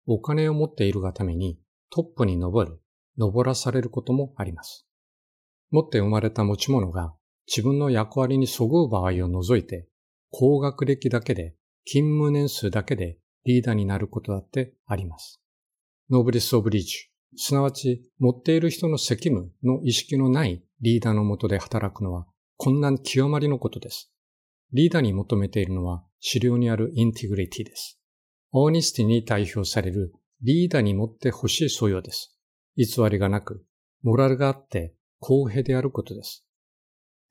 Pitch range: 100-135 Hz